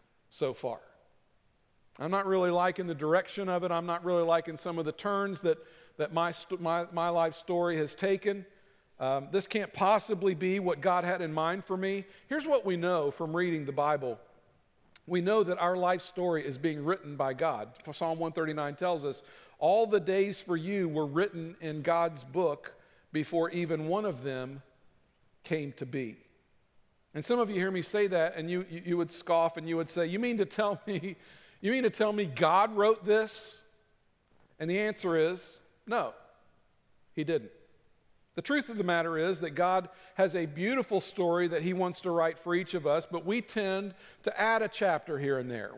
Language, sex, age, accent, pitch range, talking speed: English, male, 50-69, American, 165-195 Hz, 195 wpm